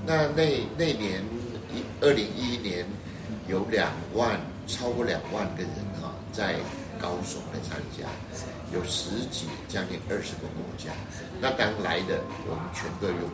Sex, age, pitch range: male, 60-79, 90-120 Hz